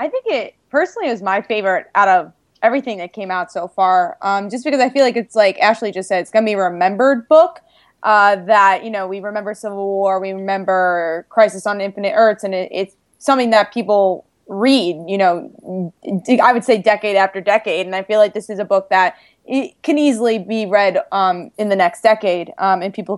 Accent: American